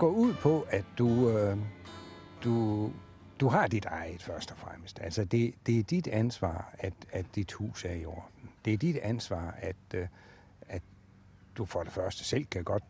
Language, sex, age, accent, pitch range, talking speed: Danish, male, 60-79, native, 90-110 Hz, 190 wpm